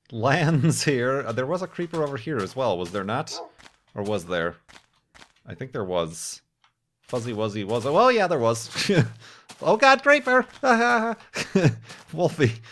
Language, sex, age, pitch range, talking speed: English, male, 30-49, 110-170 Hz, 150 wpm